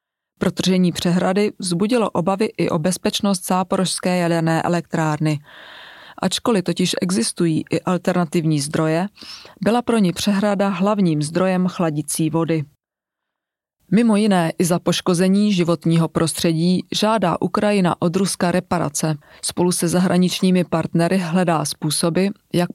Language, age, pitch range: Czech, 30-49, 165-190 Hz